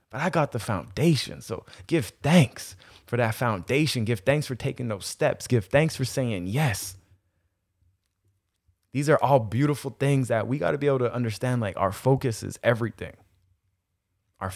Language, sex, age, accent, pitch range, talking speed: English, male, 20-39, American, 100-135 Hz, 170 wpm